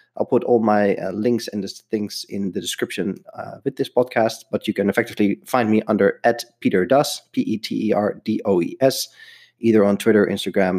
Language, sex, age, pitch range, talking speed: English, male, 30-49, 105-130 Hz, 165 wpm